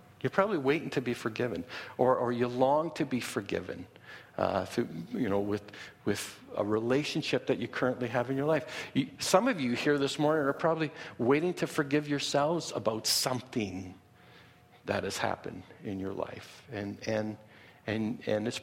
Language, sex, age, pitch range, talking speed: English, male, 60-79, 115-150 Hz, 175 wpm